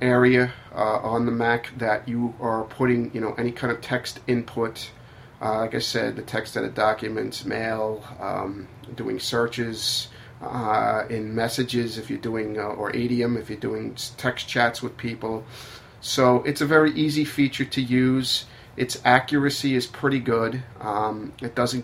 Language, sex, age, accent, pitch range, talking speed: English, male, 40-59, American, 115-125 Hz, 170 wpm